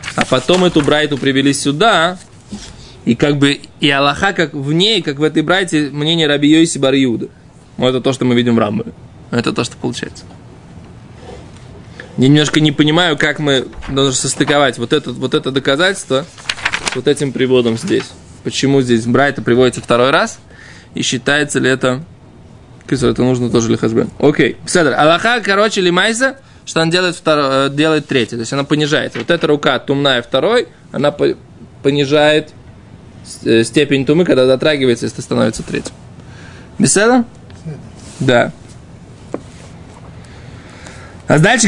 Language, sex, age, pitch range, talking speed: Russian, male, 20-39, 130-165 Hz, 140 wpm